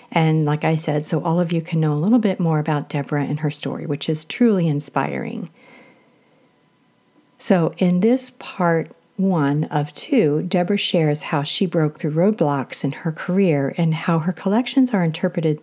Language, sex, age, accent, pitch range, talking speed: English, female, 50-69, American, 155-215 Hz, 175 wpm